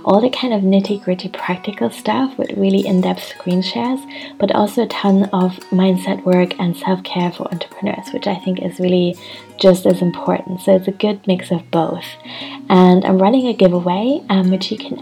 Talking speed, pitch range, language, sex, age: 190 wpm, 180-200 Hz, English, female, 20-39